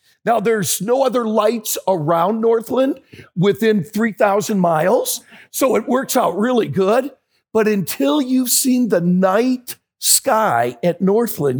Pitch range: 165-235 Hz